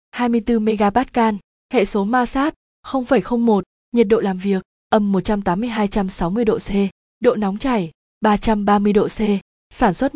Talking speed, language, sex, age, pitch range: 170 wpm, Vietnamese, female, 20-39, 200-235 Hz